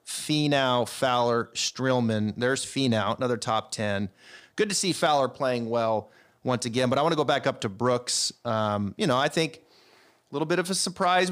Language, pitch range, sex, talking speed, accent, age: English, 120-145 Hz, male, 190 wpm, American, 30-49